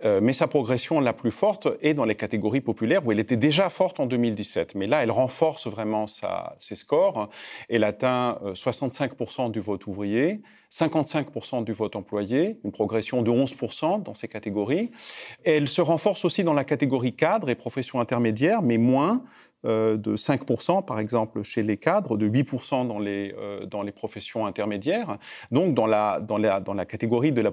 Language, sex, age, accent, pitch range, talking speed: French, male, 40-59, French, 105-140 Hz, 175 wpm